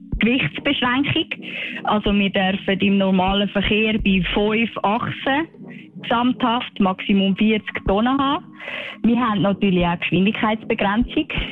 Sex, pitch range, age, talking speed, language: female, 195-245 Hz, 20-39, 110 wpm, German